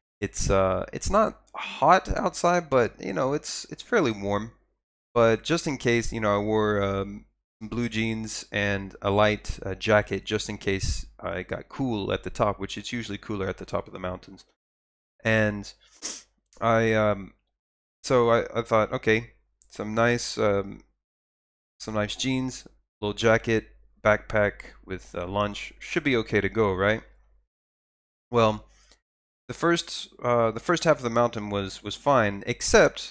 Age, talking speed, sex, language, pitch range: 20-39, 160 wpm, male, English, 100-120 Hz